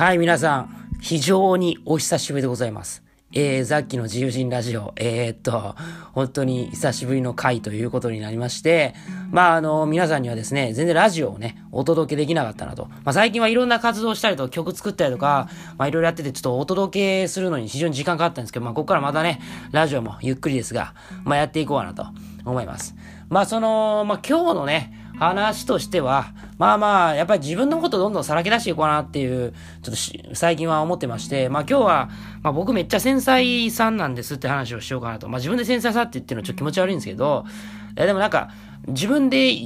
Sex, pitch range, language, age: male, 125-195 Hz, Japanese, 20-39